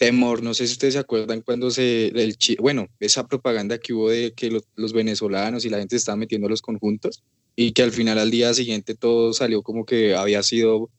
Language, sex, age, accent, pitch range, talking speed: Spanish, male, 20-39, Colombian, 110-125 Hz, 230 wpm